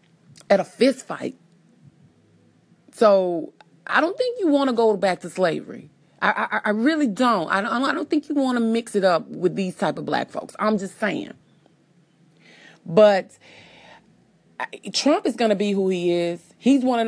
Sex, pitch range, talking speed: female, 175-220 Hz, 185 wpm